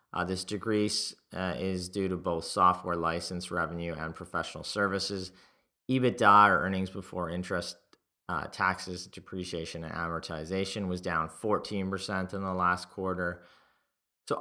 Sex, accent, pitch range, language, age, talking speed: male, American, 90-105 Hz, English, 30-49, 135 wpm